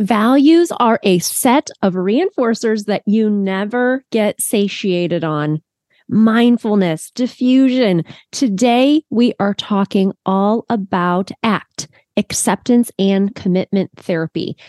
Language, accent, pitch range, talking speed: English, American, 190-240 Hz, 100 wpm